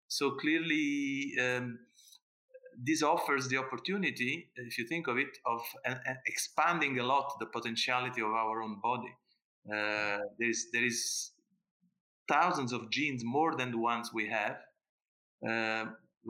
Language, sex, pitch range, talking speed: English, male, 120-170 Hz, 140 wpm